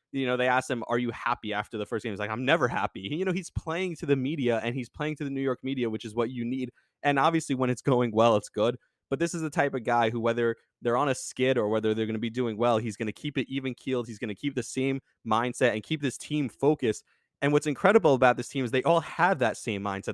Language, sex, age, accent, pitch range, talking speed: English, male, 20-39, American, 120-155 Hz, 290 wpm